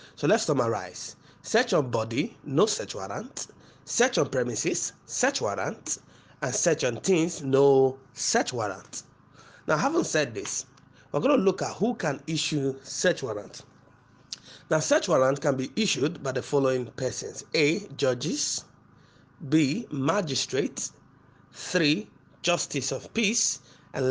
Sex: male